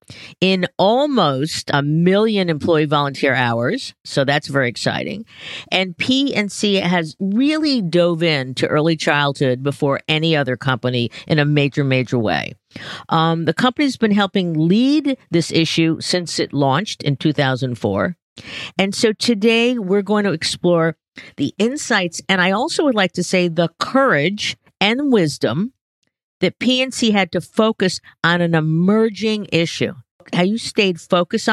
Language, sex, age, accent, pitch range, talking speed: English, female, 50-69, American, 155-210 Hz, 145 wpm